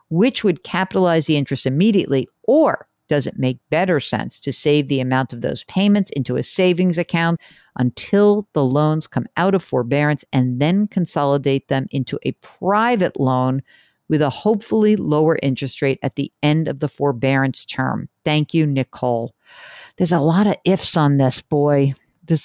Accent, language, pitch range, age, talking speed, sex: American, English, 135-185 Hz, 50-69, 170 wpm, female